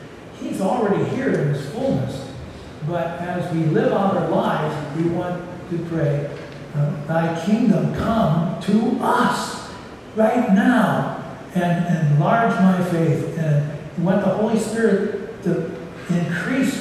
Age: 60-79